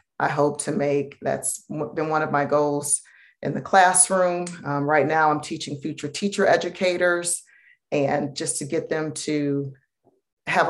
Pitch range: 145-175 Hz